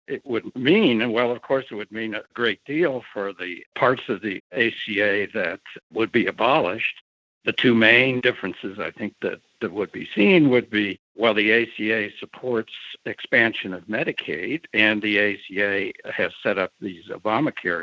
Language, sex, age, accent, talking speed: English, male, 60-79, American, 170 wpm